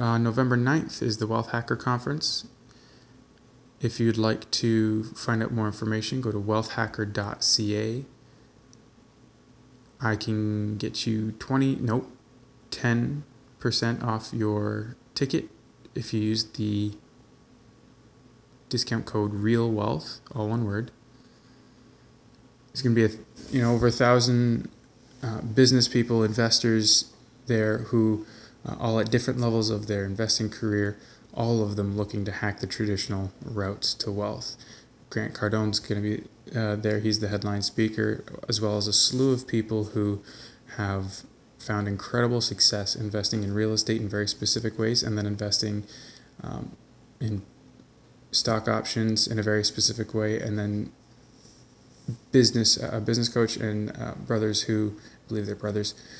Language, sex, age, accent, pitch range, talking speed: English, male, 20-39, American, 105-120 Hz, 145 wpm